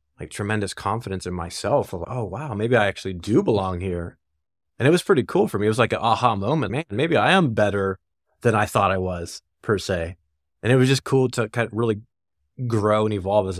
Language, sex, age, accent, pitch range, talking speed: English, male, 30-49, American, 90-115 Hz, 230 wpm